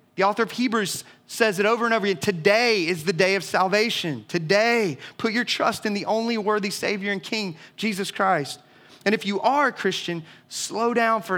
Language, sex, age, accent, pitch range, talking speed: English, male, 30-49, American, 155-200 Hz, 200 wpm